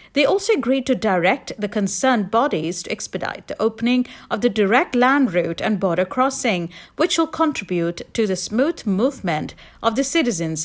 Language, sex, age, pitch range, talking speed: English, female, 50-69, 185-265 Hz, 170 wpm